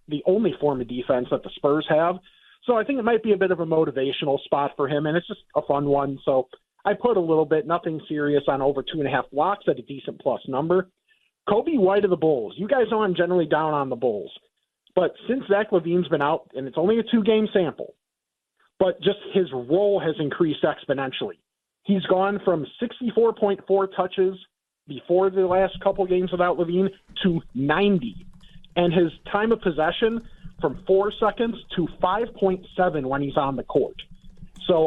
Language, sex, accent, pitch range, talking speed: English, male, American, 155-195 Hz, 185 wpm